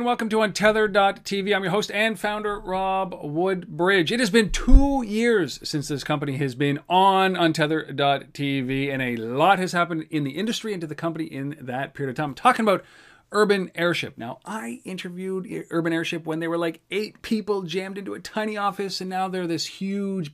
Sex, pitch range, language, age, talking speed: male, 135-190 Hz, English, 40-59, 190 wpm